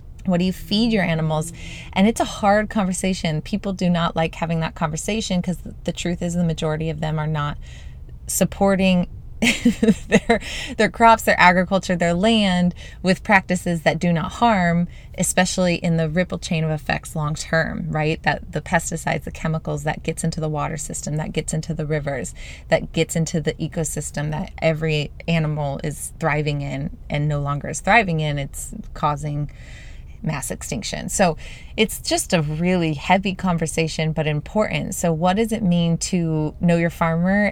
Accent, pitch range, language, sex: American, 160-185 Hz, English, female